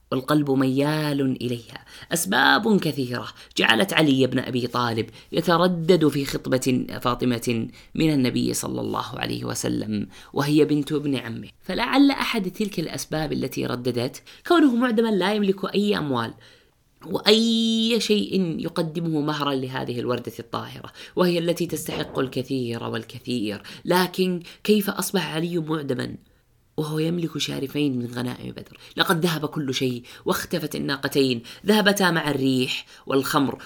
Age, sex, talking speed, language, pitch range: 20-39, female, 125 wpm, Arabic, 125-170 Hz